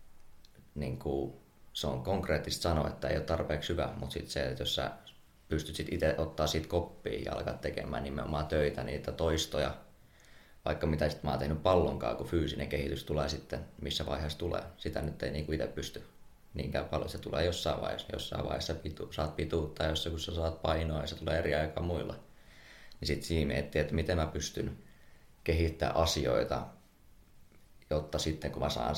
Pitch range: 70-80 Hz